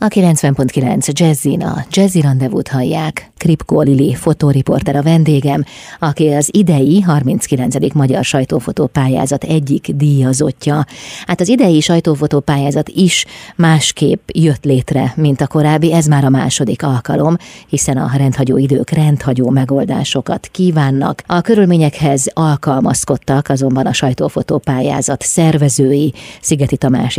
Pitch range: 135-155 Hz